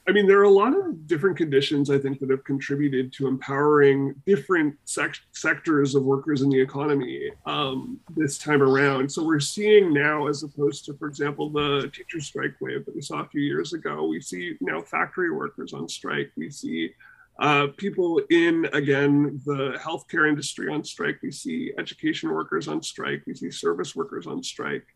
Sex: male